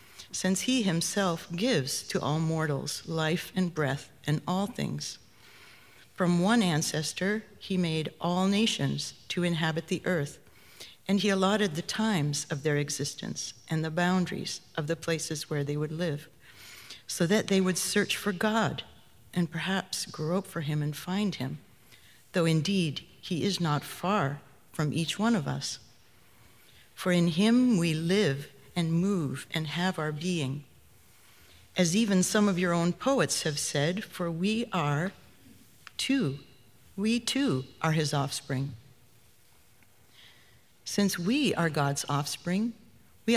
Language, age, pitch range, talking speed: English, 60-79, 145-190 Hz, 145 wpm